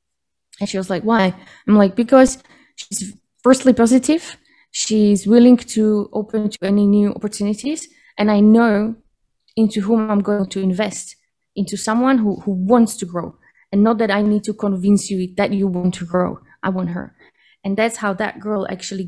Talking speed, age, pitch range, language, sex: 180 wpm, 20-39, 190-225 Hz, English, female